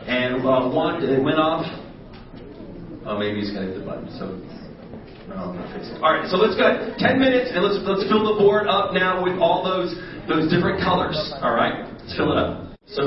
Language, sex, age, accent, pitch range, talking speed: English, male, 40-59, American, 135-180 Hz, 230 wpm